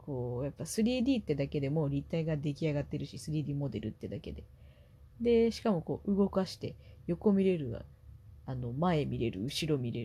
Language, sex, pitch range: Japanese, female, 135-170 Hz